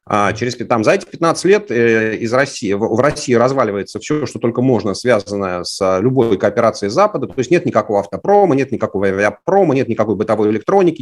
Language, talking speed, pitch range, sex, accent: Russian, 190 wpm, 105-145 Hz, male, native